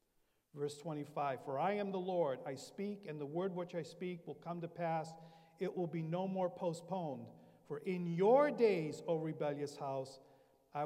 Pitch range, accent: 160-240 Hz, American